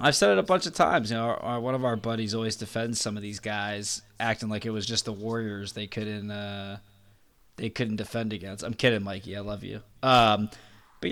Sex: male